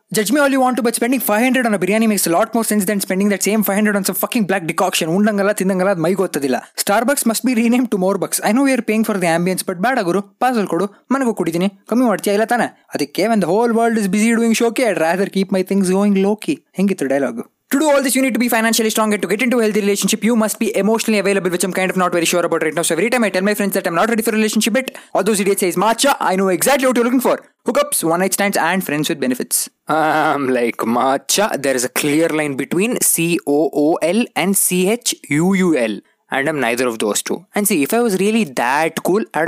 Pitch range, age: 180-230 Hz, 20-39